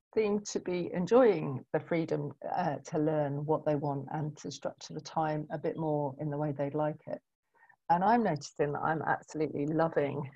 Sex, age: female, 40-59